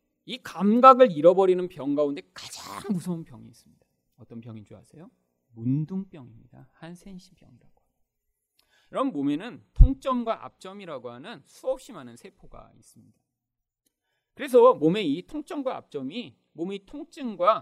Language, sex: Korean, male